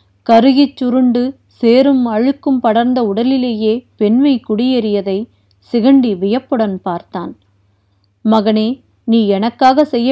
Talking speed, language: 90 wpm, Tamil